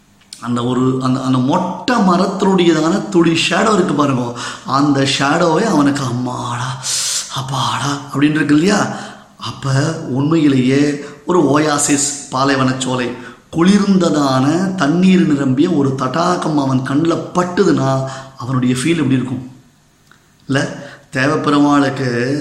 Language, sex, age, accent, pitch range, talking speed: Tamil, male, 20-39, native, 140-170 Hz, 90 wpm